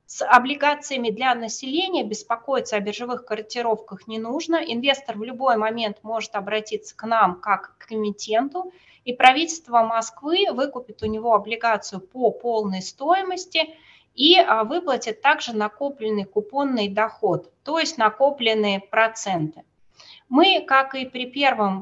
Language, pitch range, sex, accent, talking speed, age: Russian, 215-270 Hz, female, native, 125 wpm, 20-39